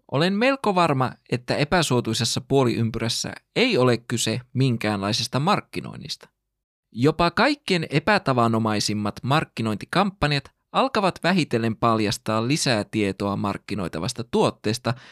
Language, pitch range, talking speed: Finnish, 110-150 Hz, 85 wpm